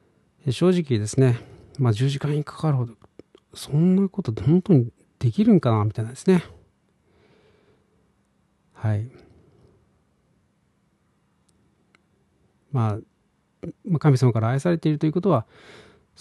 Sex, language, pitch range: male, Japanese, 110-150 Hz